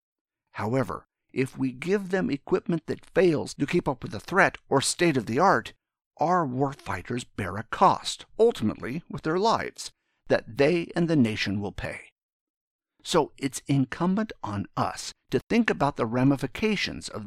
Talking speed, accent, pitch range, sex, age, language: 160 wpm, American, 125-180 Hz, male, 50-69, English